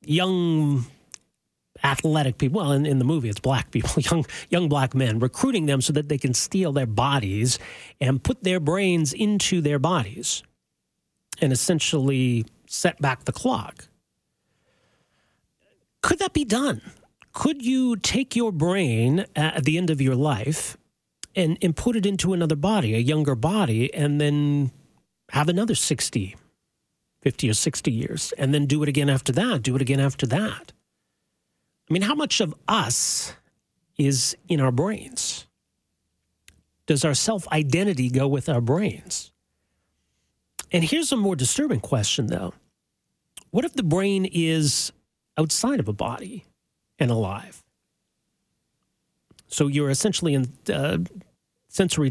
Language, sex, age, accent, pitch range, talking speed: English, male, 40-59, American, 130-175 Hz, 145 wpm